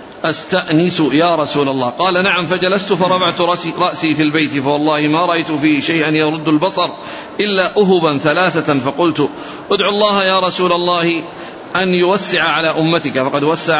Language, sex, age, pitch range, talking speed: Arabic, male, 40-59, 150-175 Hz, 145 wpm